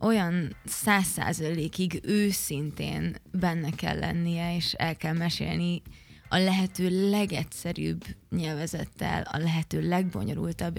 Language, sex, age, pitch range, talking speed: Hungarian, female, 20-39, 165-185 Hz, 95 wpm